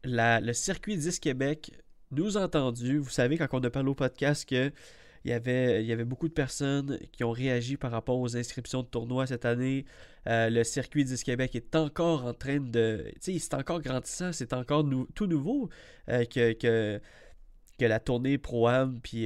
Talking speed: 190 wpm